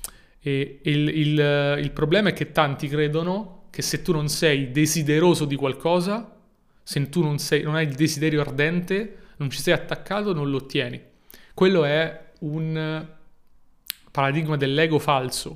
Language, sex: Italian, male